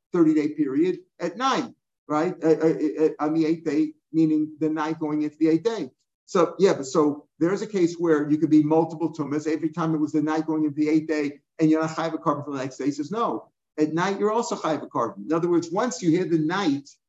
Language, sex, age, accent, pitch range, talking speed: English, male, 50-69, American, 155-185 Hz, 235 wpm